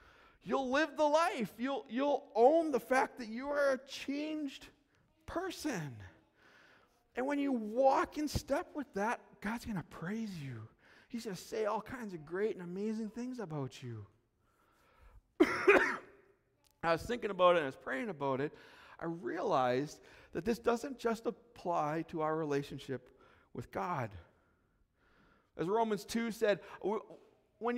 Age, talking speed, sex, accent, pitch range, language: 40-59, 150 wpm, male, American, 160-240 Hz, English